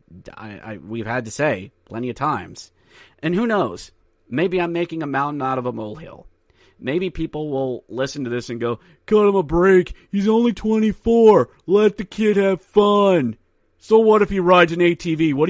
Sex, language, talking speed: male, English, 180 wpm